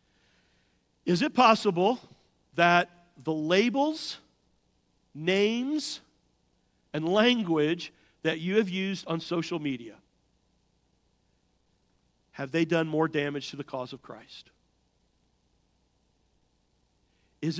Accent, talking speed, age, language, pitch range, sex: American, 90 wpm, 50-69, English, 135-200 Hz, male